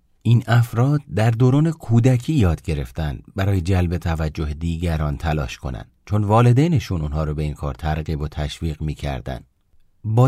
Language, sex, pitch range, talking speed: Persian, male, 85-120 Hz, 145 wpm